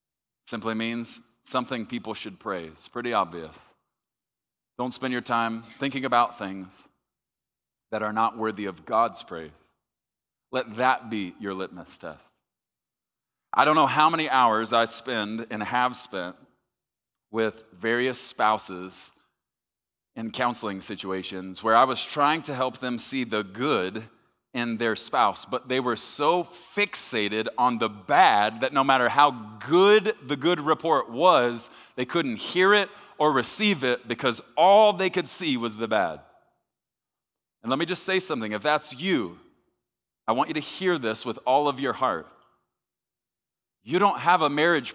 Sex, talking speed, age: male, 155 wpm, 30-49